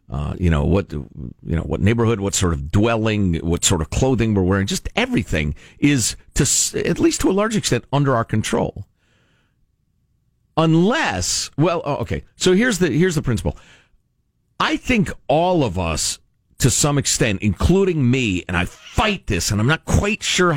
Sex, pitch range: male, 95-145 Hz